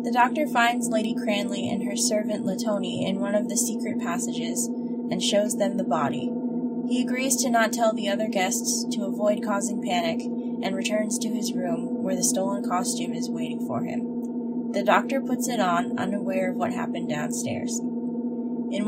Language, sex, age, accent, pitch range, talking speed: English, female, 10-29, American, 235-245 Hz, 180 wpm